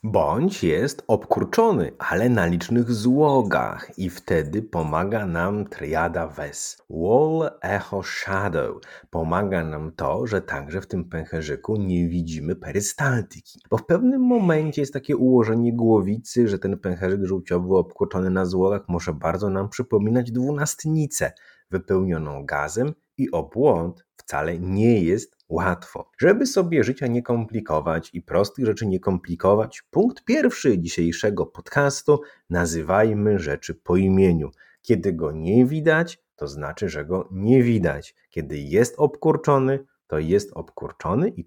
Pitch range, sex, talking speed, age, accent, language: 85-130 Hz, male, 130 wpm, 30-49, native, Polish